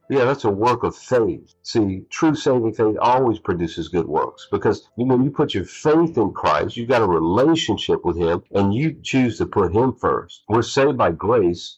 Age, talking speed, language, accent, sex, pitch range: 50-69, 210 wpm, English, American, male, 100-130 Hz